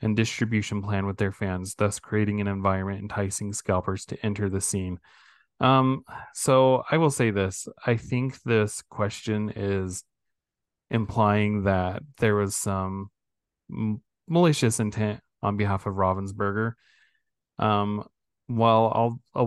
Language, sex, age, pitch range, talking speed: English, male, 20-39, 100-120 Hz, 130 wpm